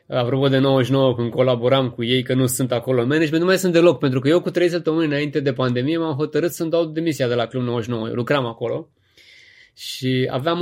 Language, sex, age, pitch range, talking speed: Romanian, male, 20-39, 130-195 Hz, 225 wpm